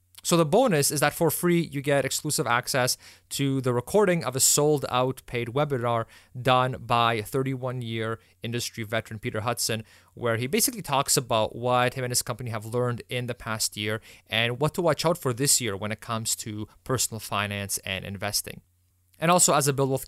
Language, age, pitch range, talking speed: English, 30-49, 110-135 Hz, 195 wpm